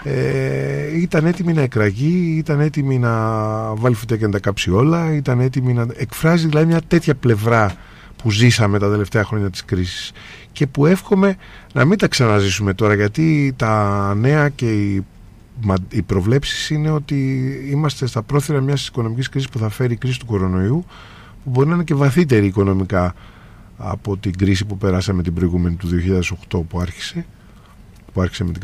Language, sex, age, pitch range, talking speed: Greek, male, 30-49, 100-145 Hz, 170 wpm